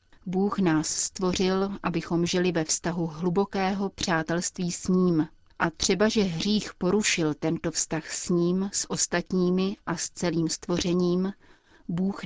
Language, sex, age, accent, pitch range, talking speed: Czech, female, 30-49, native, 170-195 Hz, 130 wpm